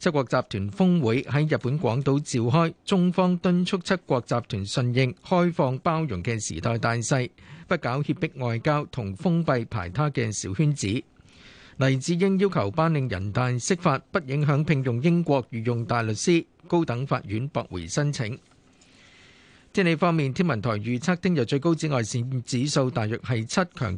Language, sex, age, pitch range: Chinese, male, 50-69, 120-165 Hz